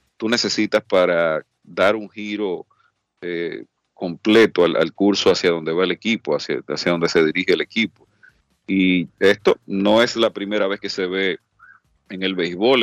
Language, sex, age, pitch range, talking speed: Spanish, male, 40-59, 90-105 Hz, 170 wpm